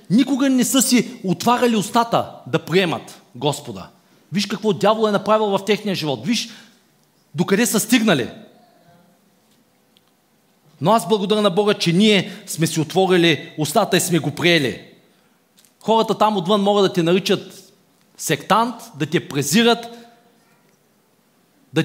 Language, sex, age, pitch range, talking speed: Bulgarian, male, 40-59, 180-230 Hz, 130 wpm